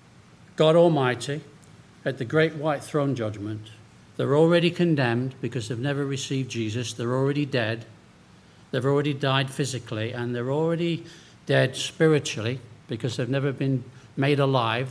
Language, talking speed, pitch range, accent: English, 135 wpm, 115-145 Hz, British